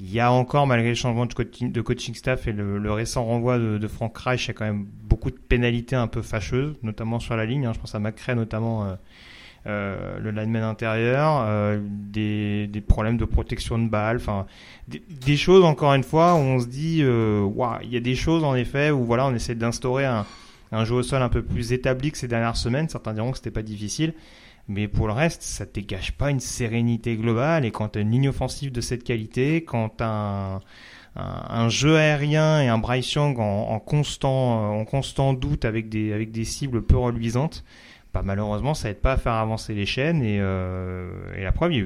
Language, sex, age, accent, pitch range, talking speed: French, male, 30-49, French, 105-130 Hz, 230 wpm